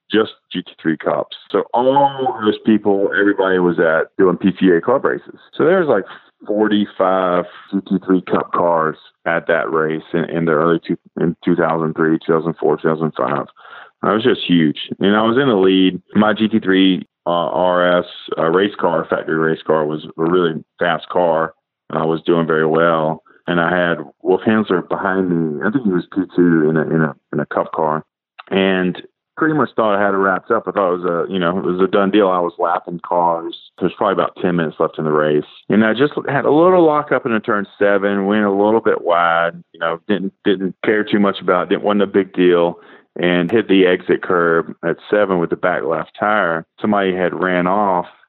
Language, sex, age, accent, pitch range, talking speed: English, male, 40-59, American, 85-100 Hz, 205 wpm